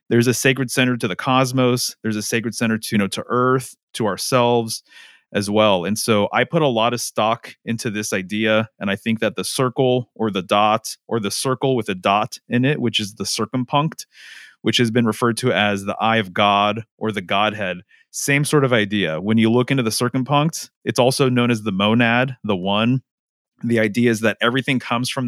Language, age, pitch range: English, 30-49, 110-125 Hz